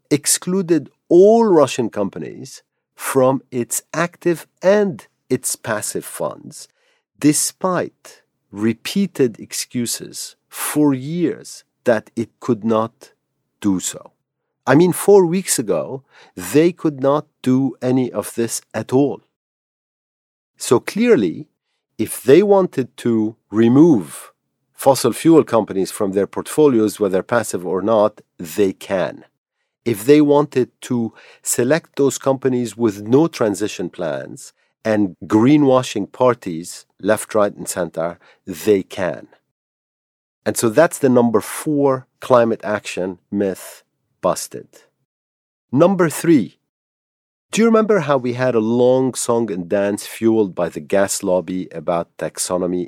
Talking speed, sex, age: 120 wpm, male, 50-69